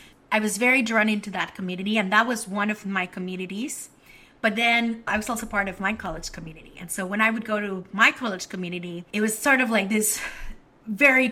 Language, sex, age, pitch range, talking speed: English, female, 30-49, 180-220 Hz, 215 wpm